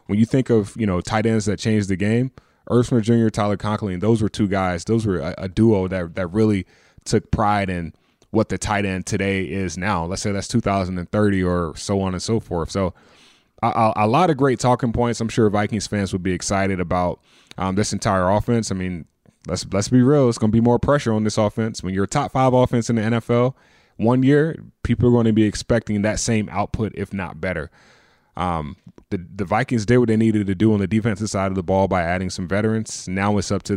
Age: 20-39